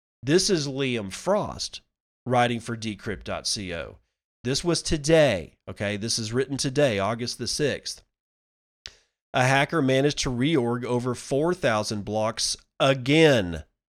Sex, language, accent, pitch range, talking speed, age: male, English, American, 105-130 Hz, 115 wpm, 40-59